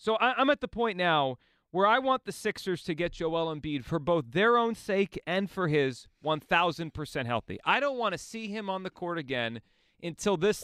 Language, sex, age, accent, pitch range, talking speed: English, male, 30-49, American, 165-240 Hz, 210 wpm